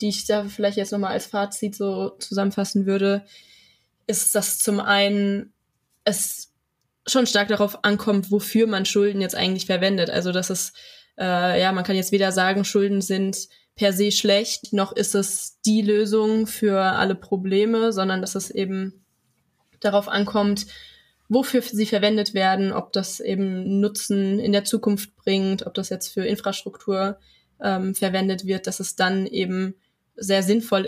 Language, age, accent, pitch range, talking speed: German, 20-39, German, 195-210 Hz, 155 wpm